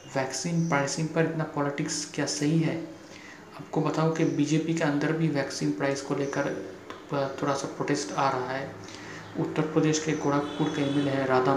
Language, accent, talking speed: Hindi, native, 180 wpm